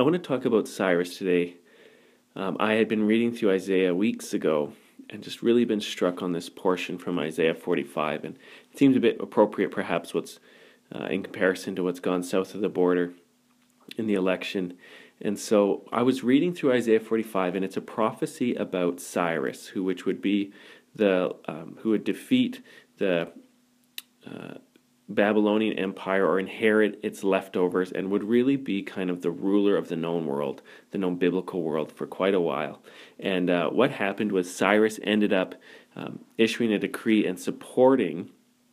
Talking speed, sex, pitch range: 175 wpm, male, 90-110 Hz